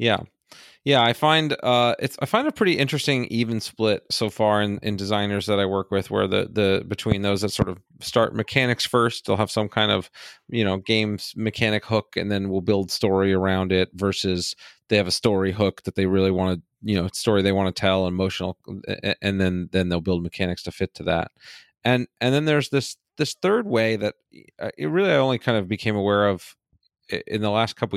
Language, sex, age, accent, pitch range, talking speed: English, male, 30-49, American, 100-115 Hz, 215 wpm